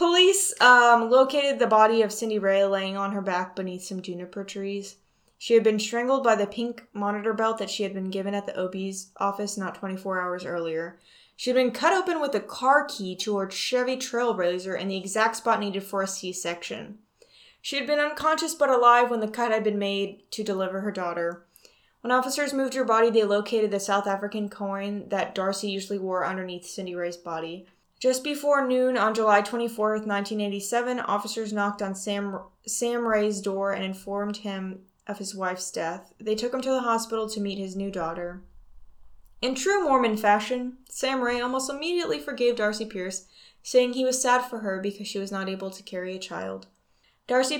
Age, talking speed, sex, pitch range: 10-29, 195 wpm, female, 195-240 Hz